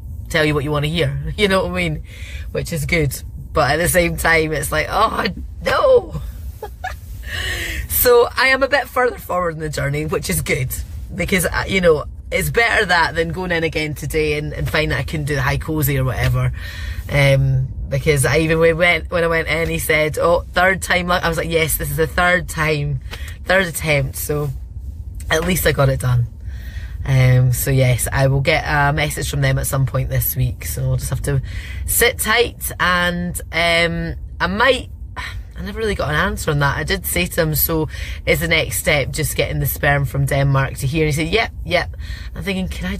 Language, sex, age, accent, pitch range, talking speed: English, female, 20-39, British, 125-165 Hz, 210 wpm